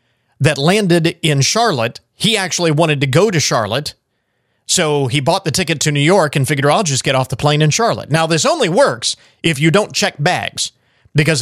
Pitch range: 130-165 Hz